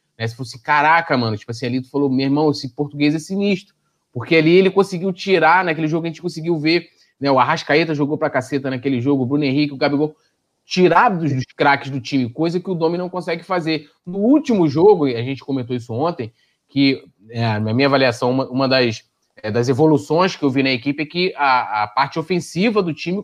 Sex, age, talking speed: male, 20-39, 215 wpm